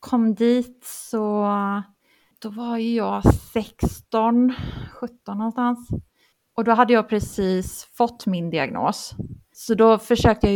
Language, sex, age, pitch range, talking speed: English, female, 30-49, 185-235 Hz, 125 wpm